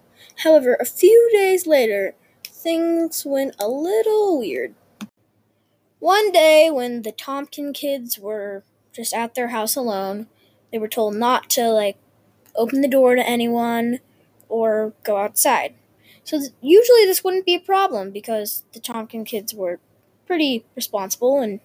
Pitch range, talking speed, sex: 220-320 Hz, 145 wpm, female